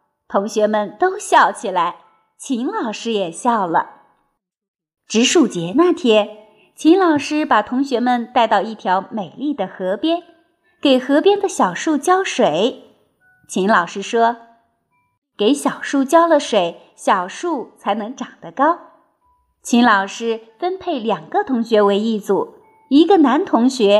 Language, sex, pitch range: Chinese, female, 215-350 Hz